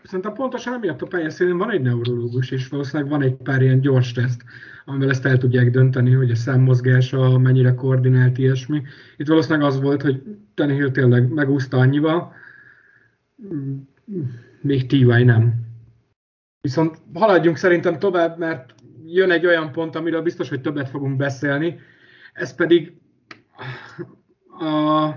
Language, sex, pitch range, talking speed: Hungarian, male, 130-175 Hz, 135 wpm